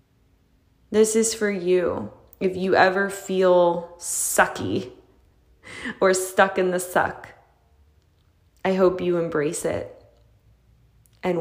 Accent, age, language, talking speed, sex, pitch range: American, 20-39, English, 105 wpm, female, 155-200 Hz